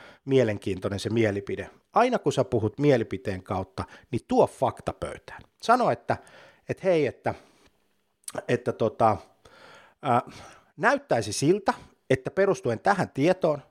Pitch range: 95-125 Hz